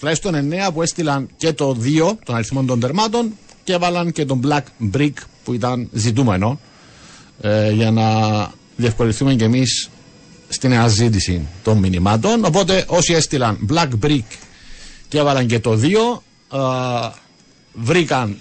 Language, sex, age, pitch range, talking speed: Greek, male, 50-69, 115-165 Hz, 140 wpm